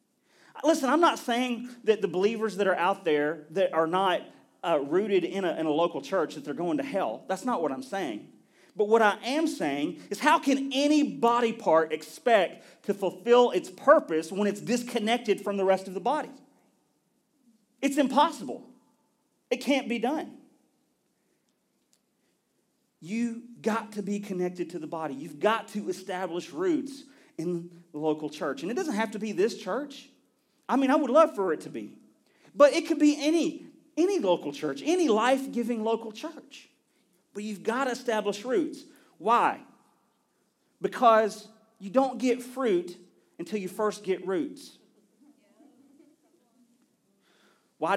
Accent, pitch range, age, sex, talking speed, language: American, 180-275 Hz, 40-59, male, 160 wpm, English